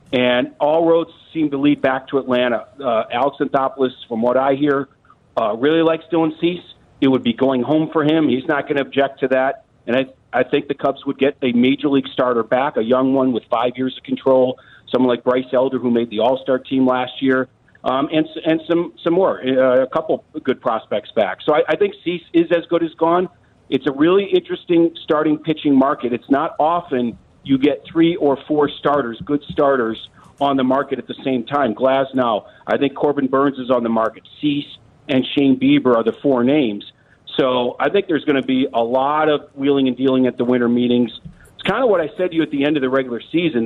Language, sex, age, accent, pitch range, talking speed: English, male, 50-69, American, 125-155 Hz, 225 wpm